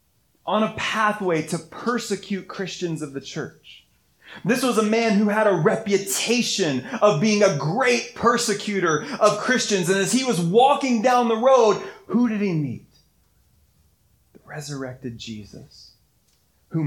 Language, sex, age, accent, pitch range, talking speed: English, male, 30-49, American, 135-230 Hz, 140 wpm